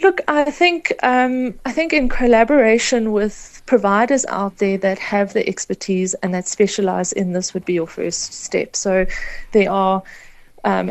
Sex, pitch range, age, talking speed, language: female, 190-230 Hz, 30-49, 165 wpm, English